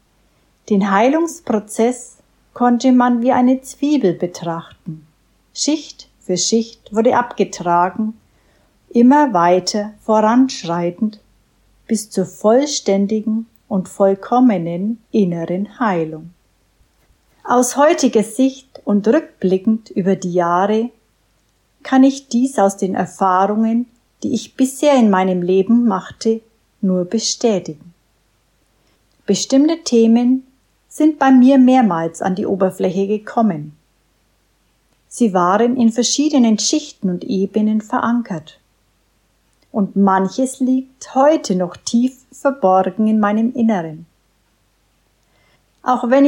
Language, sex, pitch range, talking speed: German, female, 190-250 Hz, 100 wpm